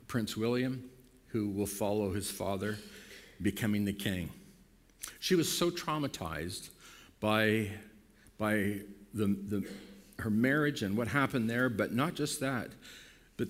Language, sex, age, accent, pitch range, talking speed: English, male, 50-69, American, 105-130 Hz, 130 wpm